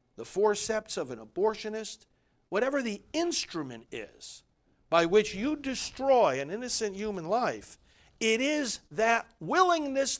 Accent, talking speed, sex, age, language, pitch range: American, 125 wpm, male, 50-69, English, 190-265 Hz